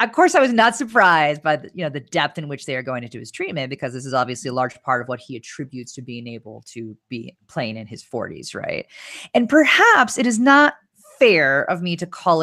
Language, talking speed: English, 245 wpm